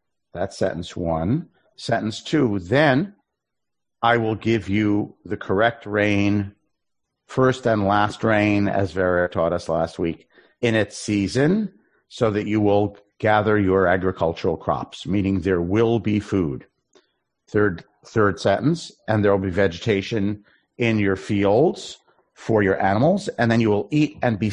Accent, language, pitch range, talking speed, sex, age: American, English, 95-110 Hz, 145 wpm, male, 50-69